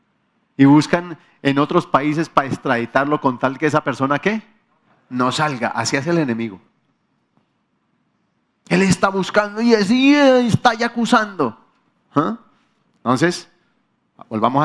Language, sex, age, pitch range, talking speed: Spanish, male, 40-59, 135-210 Hz, 125 wpm